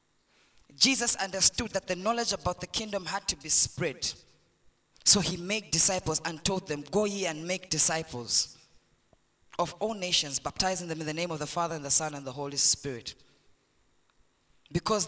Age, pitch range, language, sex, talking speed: 20-39, 140-210 Hz, English, female, 170 wpm